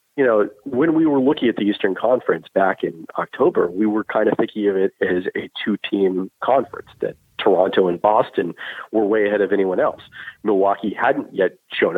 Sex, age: male, 40-59